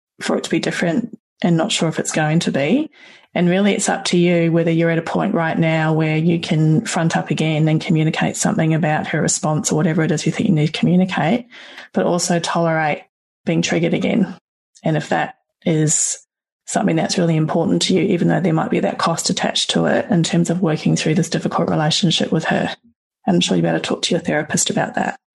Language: English